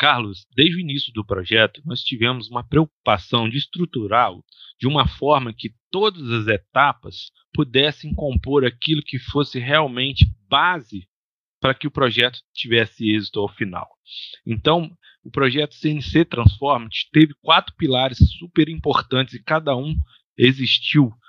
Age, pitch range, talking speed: 40-59, 115-155 Hz, 135 wpm